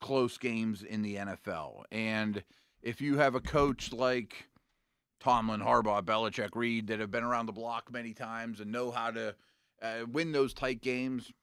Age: 40-59